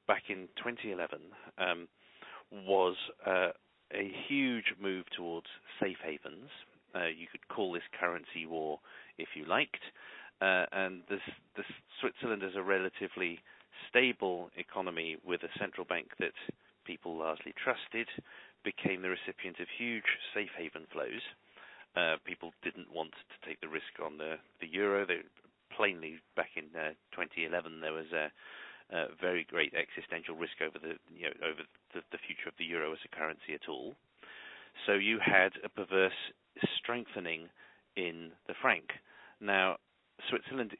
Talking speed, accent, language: 150 wpm, British, English